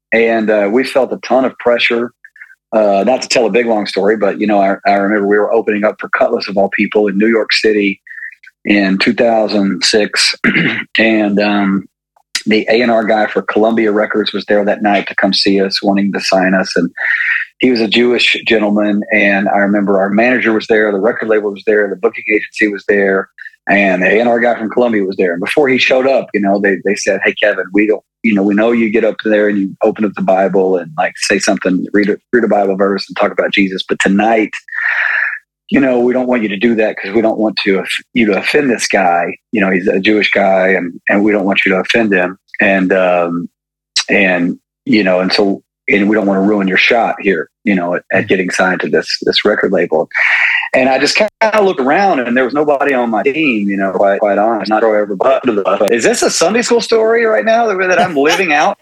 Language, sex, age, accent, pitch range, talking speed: English, male, 40-59, American, 100-120 Hz, 235 wpm